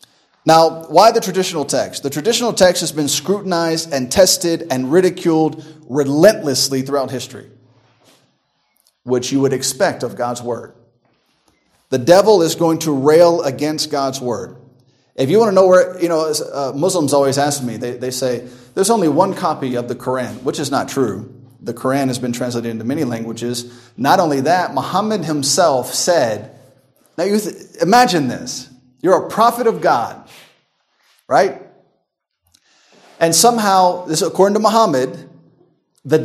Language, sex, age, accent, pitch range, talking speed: English, male, 30-49, American, 130-175 Hz, 155 wpm